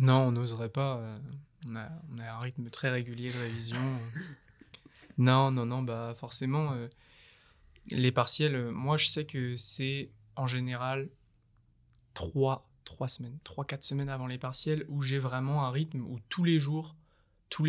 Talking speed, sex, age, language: 145 wpm, male, 20-39, French